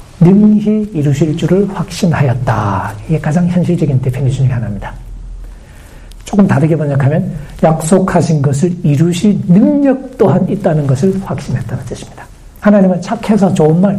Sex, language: male, Korean